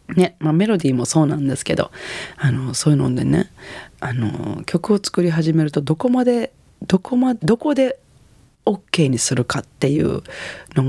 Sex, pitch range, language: female, 135-185 Hz, Japanese